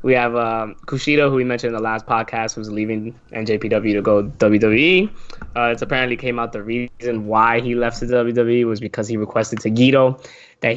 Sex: male